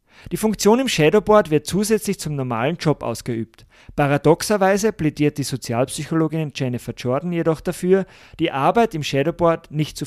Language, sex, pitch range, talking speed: German, male, 135-180 Hz, 145 wpm